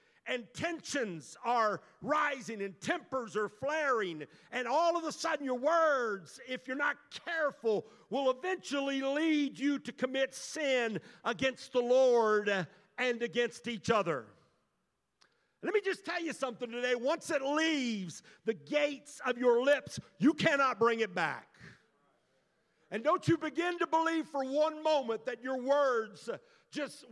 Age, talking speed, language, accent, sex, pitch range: 50-69, 145 wpm, English, American, male, 220-280 Hz